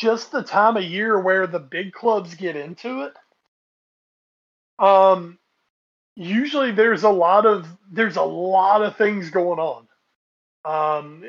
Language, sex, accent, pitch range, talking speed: English, male, American, 160-200 Hz, 140 wpm